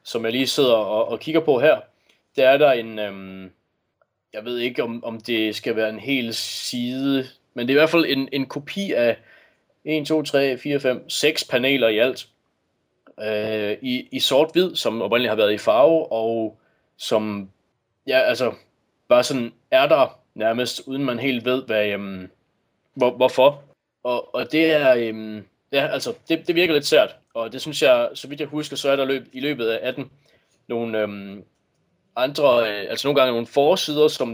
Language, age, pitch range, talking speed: Danish, 20-39, 110-145 Hz, 190 wpm